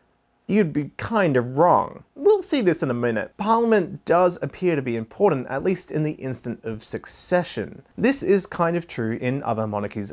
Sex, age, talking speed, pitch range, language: male, 30-49, 190 wpm, 110-165 Hz, English